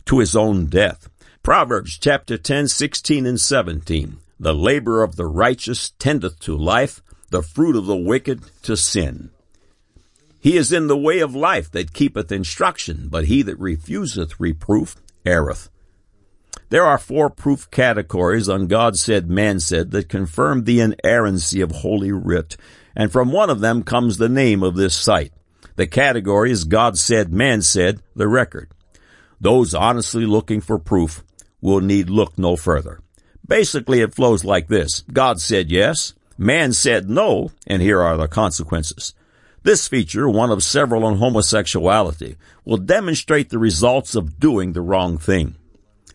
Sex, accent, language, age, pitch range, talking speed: male, American, English, 60-79, 85-110 Hz, 155 wpm